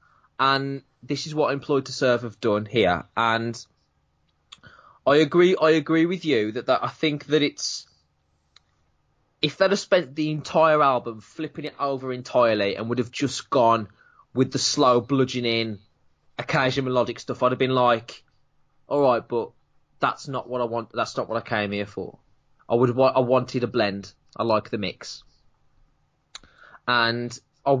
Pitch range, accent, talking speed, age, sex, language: 115-135 Hz, British, 165 wpm, 20-39, male, English